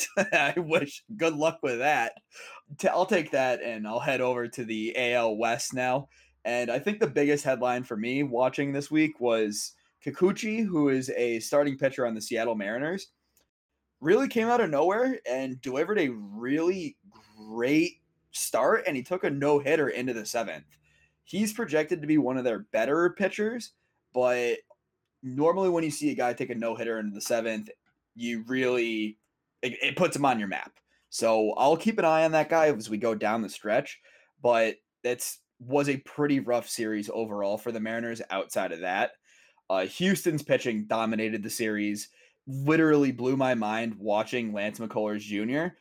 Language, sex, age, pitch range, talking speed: English, male, 20-39, 110-150 Hz, 170 wpm